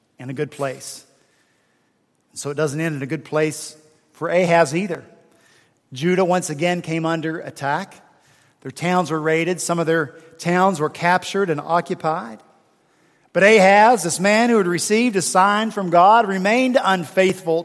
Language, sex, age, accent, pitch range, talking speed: English, male, 50-69, American, 160-210 Hz, 155 wpm